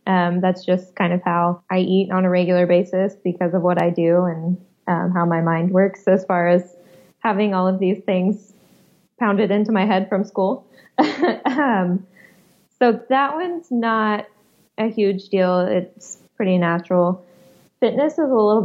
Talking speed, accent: 165 wpm, American